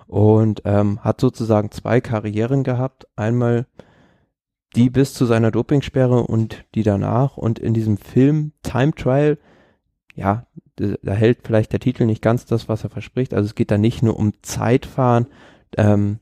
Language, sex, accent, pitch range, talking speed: German, male, German, 105-120 Hz, 160 wpm